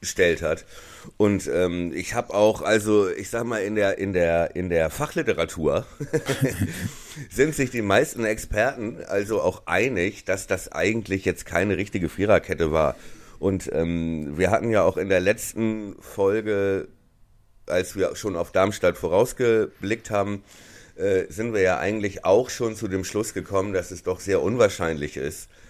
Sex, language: male, German